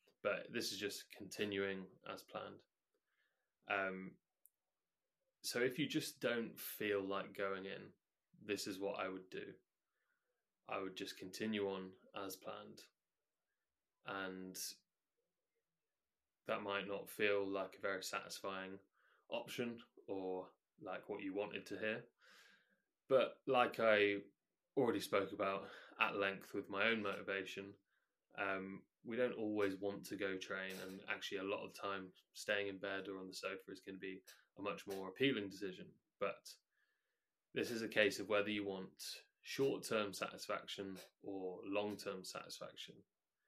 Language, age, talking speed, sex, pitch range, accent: English, 20-39, 145 wpm, male, 95-105 Hz, British